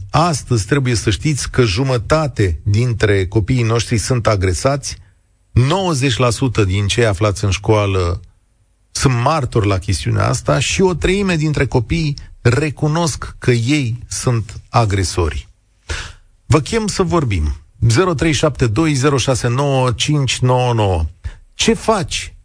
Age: 40-59